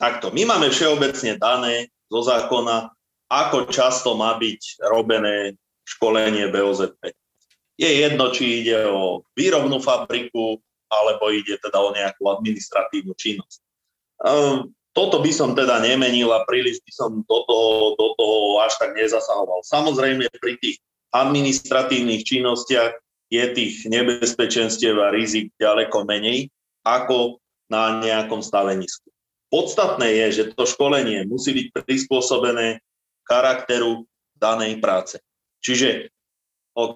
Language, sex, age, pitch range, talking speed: Slovak, male, 30-49, 110-125 Hz, 120 wpm